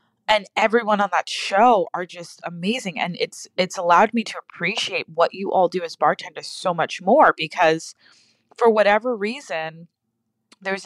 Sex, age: female, 20-39